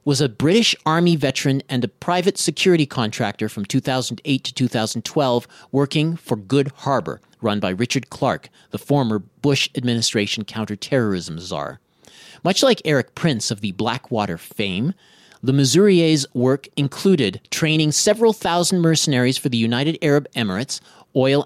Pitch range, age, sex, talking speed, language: 120-165 Hz, 40-59, male, 140 wpm, English